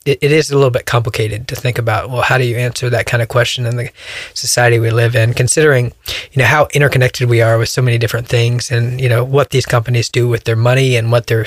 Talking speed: 255 wpm